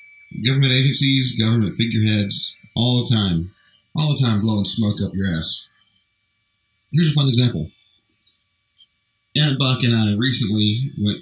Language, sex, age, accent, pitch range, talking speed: English, male, 30-49, American, 95-115 Hz, 135 wpm